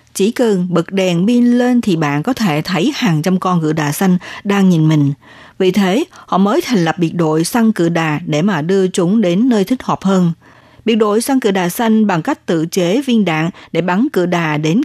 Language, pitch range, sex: Vietnamese, 170-220 Hz, female